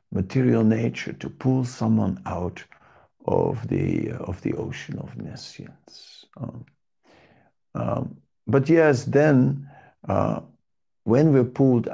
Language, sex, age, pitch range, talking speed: English, male, 50-69, 105-130 Hz, 115 wpm